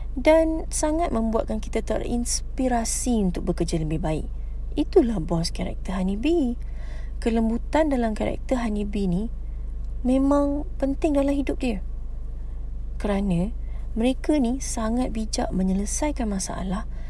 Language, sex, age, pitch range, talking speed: English, female, 30-49, 180-260 Hz, 110 wpm